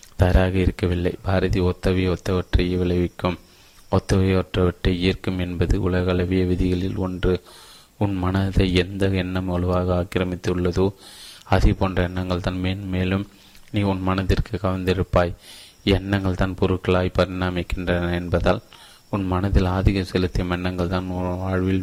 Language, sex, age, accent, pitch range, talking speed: Tamil, male, 20-39, native, 90-100 Hz, 115 wpm